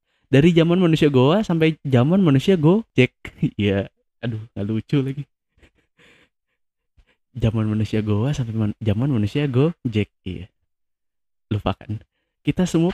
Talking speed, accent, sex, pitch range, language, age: 135 wpm, native, male, 120-170 Hz, Indonesian, 20-39